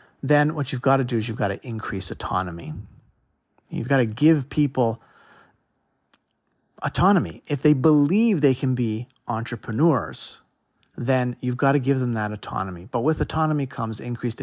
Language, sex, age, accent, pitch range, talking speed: English, male, 40-59, American, 110-145 Hz, 160 wpm